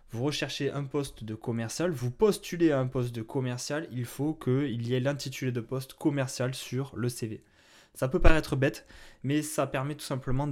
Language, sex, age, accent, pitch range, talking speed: French, male, 20-39, French, 115-145 Hz, 195 wpm